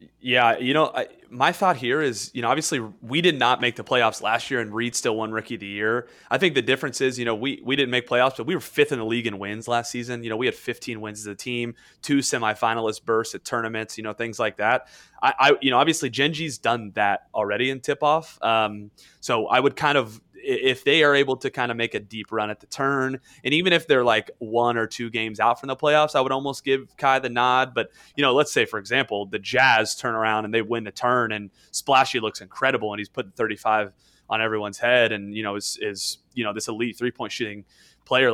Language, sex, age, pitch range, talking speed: English, male, 30-49, 105-125 Hz, 250 wpm